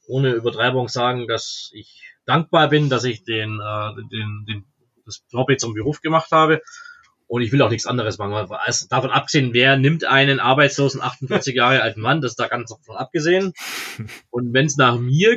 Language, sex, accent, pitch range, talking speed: German, male, German, 125-155 Hz, 185 wpm